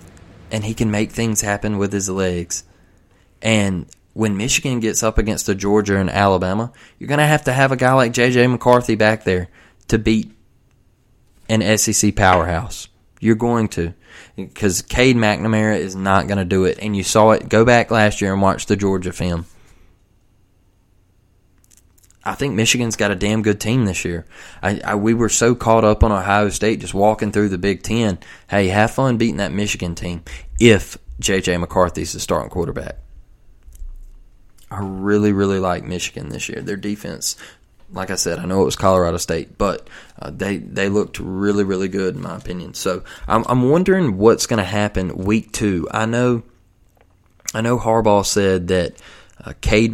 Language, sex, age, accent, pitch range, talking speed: English, male, 20-39, American, 95-110 Hz, 180 wpm